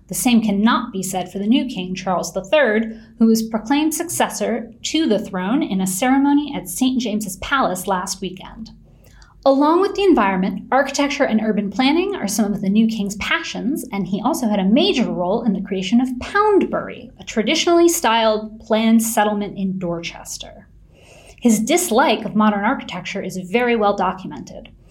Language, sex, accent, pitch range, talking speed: English, female, American, 195-260 Hz, 170 wpm